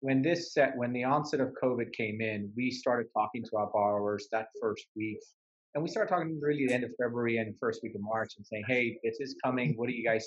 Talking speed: 255 wpm